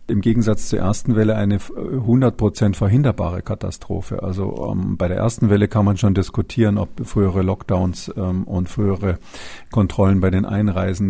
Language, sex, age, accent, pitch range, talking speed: German, male, 50-69, German, 95-110 Hz, 155 wpm